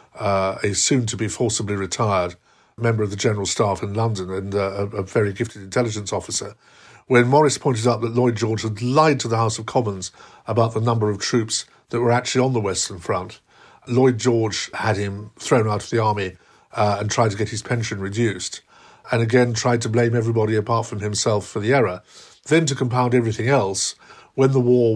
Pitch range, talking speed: 105-120 Hz, 195 wpm